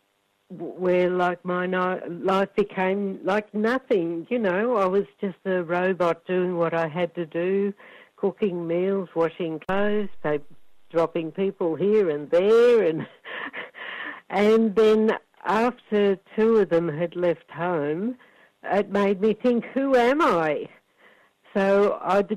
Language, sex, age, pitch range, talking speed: English, female, 60-79, 170-205 Hz, 130 wpm